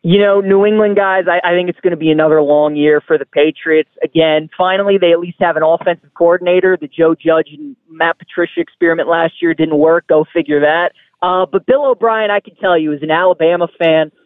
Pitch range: 160-195 Hz